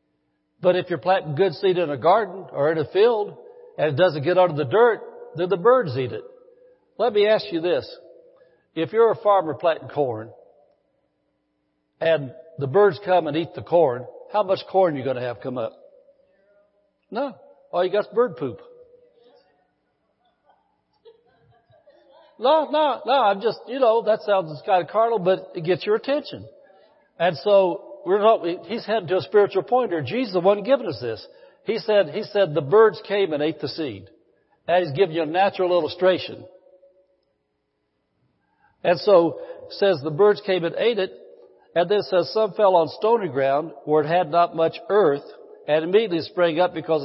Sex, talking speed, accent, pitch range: male, 180 wpm, American, 165-240 Hz